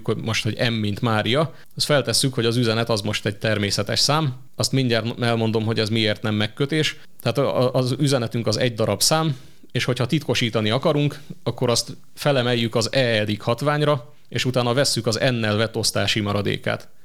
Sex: male